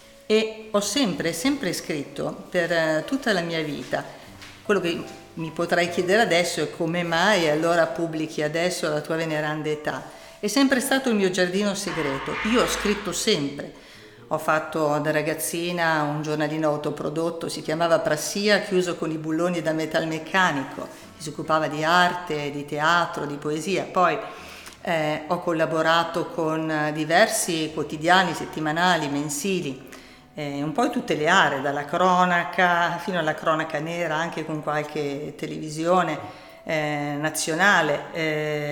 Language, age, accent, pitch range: Italian, 50-69, native, 155-180 Hz